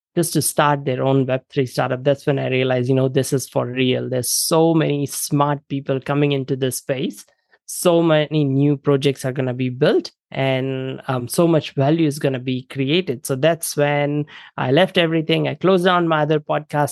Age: 20-39